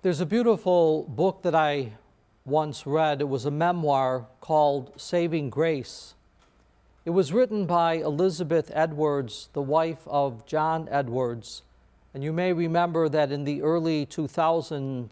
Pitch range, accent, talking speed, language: 135-175 Hz, American, 140 wpm, English